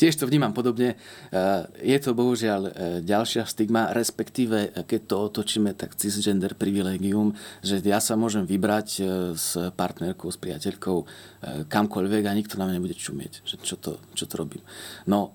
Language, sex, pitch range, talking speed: Slovak, male, 90-110 Hz, 150 wpm